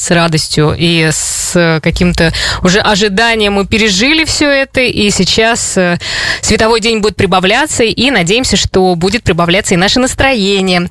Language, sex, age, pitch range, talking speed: Russian, female, 20-39, 180-220 Hz, 140 wpm